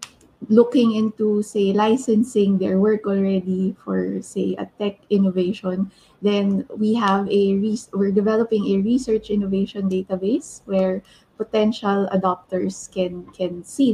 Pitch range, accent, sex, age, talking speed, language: 200-235 Hz, Filipino, female, 20-39, 120 wpm, English